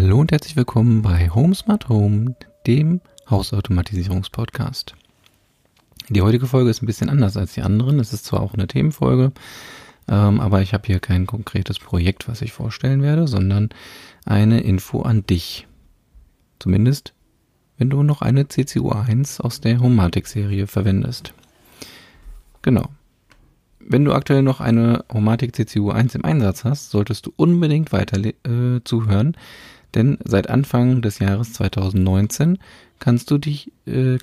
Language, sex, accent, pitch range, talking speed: English, male, German, 100-130 Hz, 145 wpm